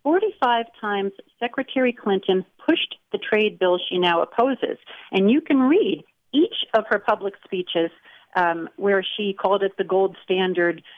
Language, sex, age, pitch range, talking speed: English, female, 50-69, 175-215 Hz, 155 wpm